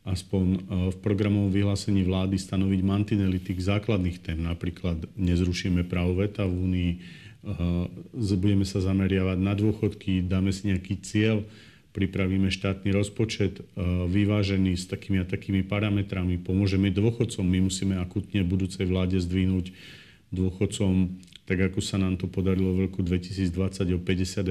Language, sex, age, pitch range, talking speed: Slovak, male, 40-59, 95-105 Hz, 130 wpm